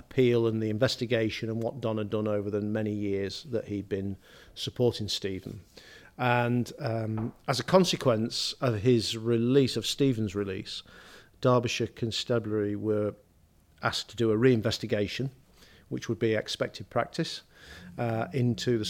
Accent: British